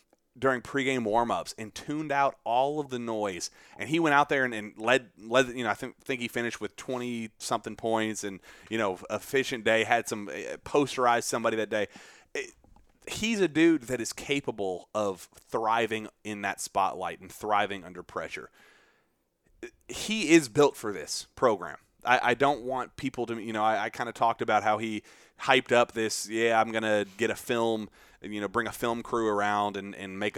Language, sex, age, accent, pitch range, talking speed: English, male, 30-49, American, 105-130 Hz, 195 wpm